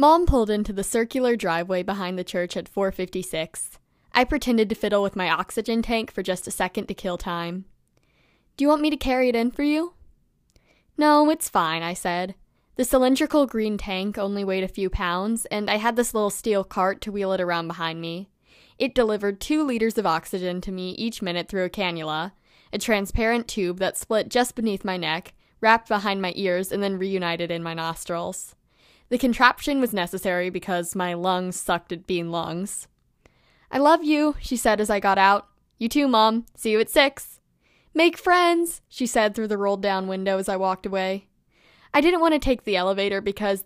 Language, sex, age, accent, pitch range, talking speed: English, female, 10-29, American, 185-230 Hz, 195 wpm